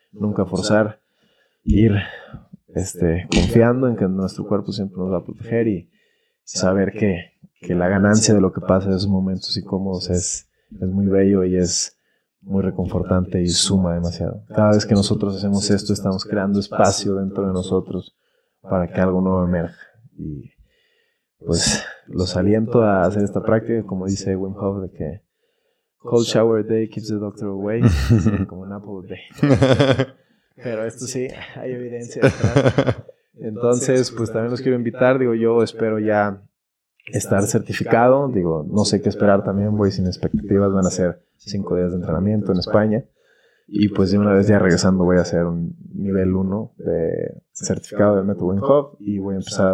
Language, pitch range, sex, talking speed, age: Spanish, 95-110 Hz, male, 165 wpm, 20-39